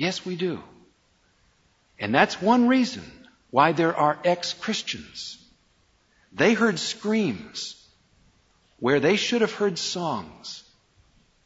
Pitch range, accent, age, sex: 150-210 Hz, American, 50-69, male